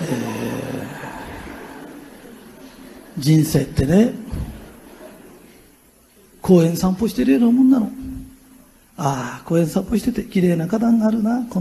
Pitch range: 210-275 Hz